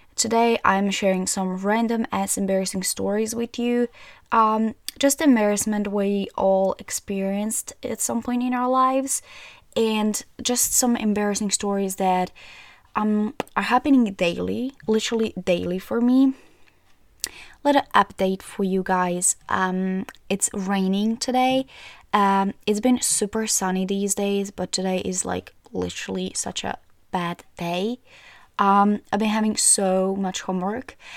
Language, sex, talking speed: English, female, 135 wpm